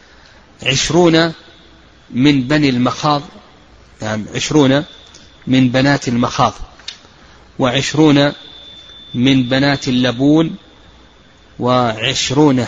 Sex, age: male, 30-49